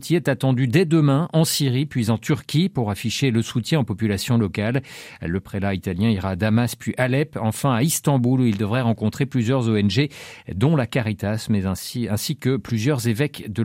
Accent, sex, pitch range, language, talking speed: French, male, 115-150 Hz, French, 190 wpm